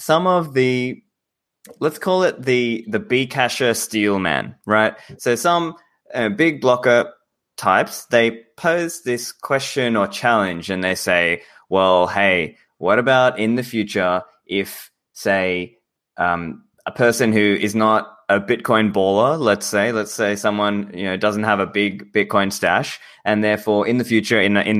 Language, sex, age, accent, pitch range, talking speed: English, male, 20-39, Australian, 100-120 Hz, 160 wpm